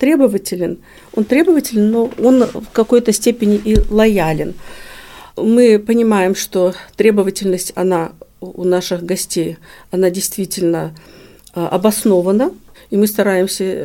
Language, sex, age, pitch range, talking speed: Russian, female, 50-69, 185-225 Hz, 90 wpm